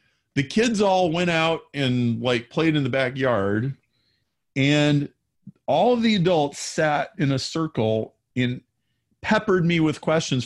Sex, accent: male, American